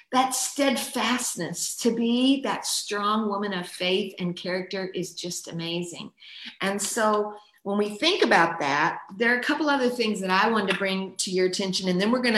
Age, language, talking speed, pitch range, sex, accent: 50-69, English, 190 wpm, 180-215 Hz, female, American